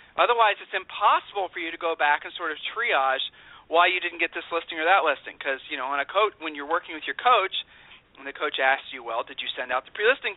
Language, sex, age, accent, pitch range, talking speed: English, male, 40-59, American, 160-205 Hz, 260 wpm